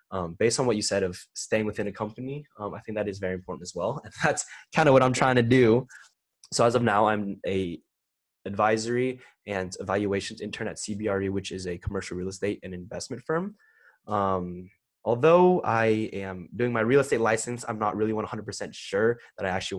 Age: 20-39